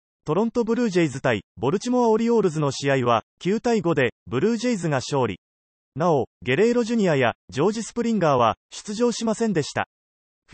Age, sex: 30-49, male